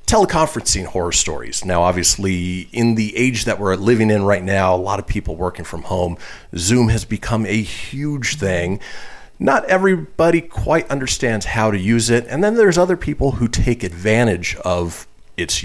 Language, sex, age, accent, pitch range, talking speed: English, male, 40-59, American, 95-125 Hz, 175 wpm